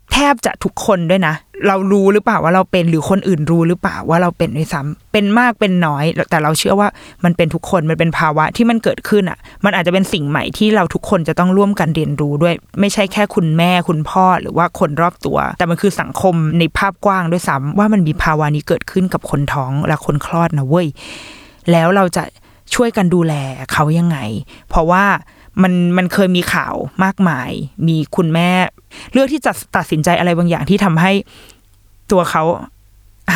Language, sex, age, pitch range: Thai, female, 20-39, 155-195 Hz